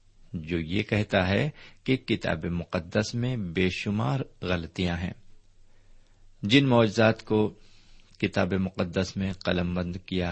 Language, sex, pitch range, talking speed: Urdu, male, 95-115 Hz, 120 wpm